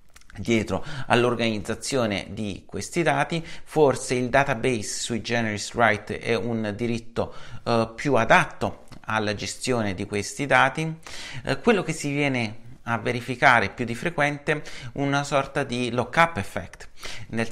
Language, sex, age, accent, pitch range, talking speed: Italian, male, 40-59, native, 110-140 Hz, 135 wpm